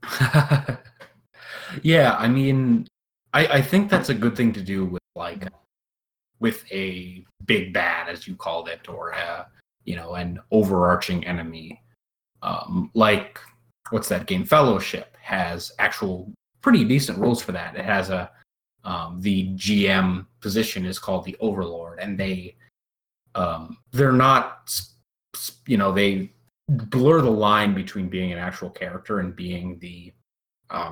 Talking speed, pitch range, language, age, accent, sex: 140 wpm, 90-120 Hz, English, 30-49, American, male